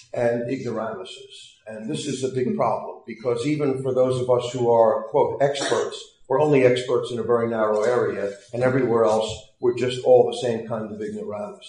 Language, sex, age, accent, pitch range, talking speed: English, male, 50-69, American, 115-140 Hz, 185 wpm